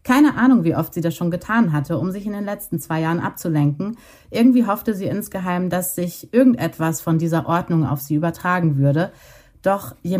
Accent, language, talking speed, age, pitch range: German, German, 195 wpm, 30-49, 150-185 Hz